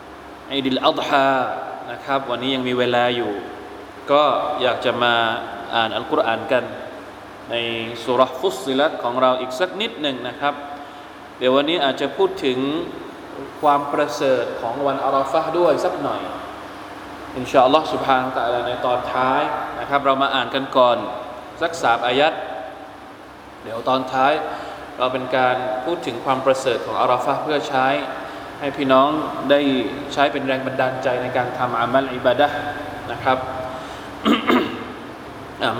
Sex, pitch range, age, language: male, 125-145 Hz, 20-39, Thai